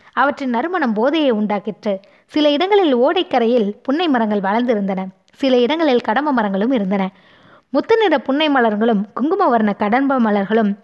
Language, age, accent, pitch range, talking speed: Tamil, 20-39, native, 210-275 Hz, 120 wpm